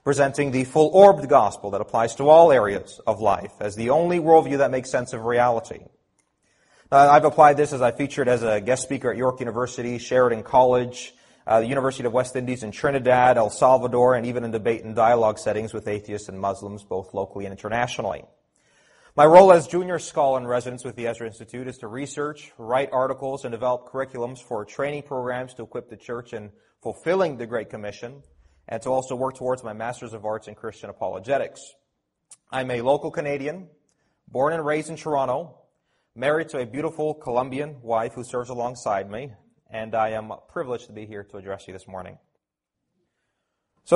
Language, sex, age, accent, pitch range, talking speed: English, male, 30-49, American, 115-140 Hz, 185 wpm